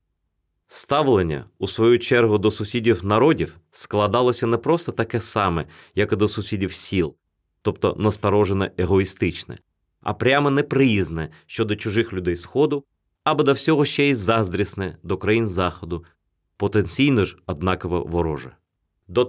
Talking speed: 130 wpm